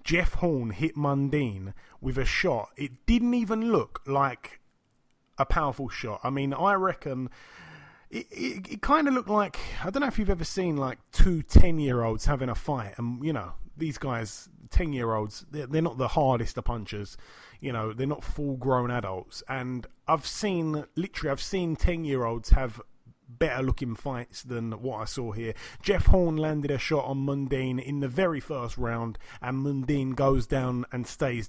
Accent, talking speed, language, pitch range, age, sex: British, 175 wpm, English, 120-160 Hz, 30-49, male